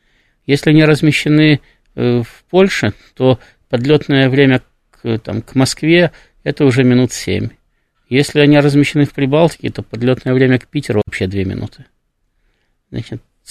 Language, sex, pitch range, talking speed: Russian, male, 115-145 Hz, 140 wpm